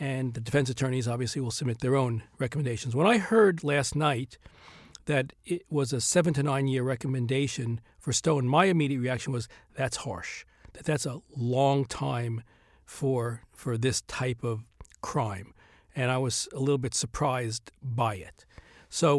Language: English